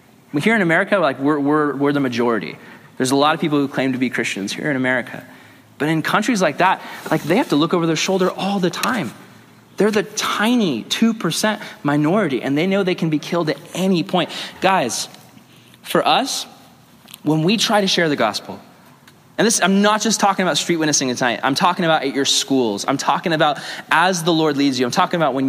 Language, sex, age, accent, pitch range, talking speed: English, male, 20-39, American, 140-205 Hz, 215 wpm